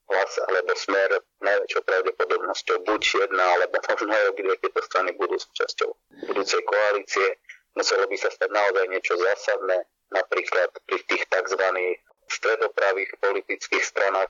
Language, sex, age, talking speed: Slovak, male, 30-49, 130 wpm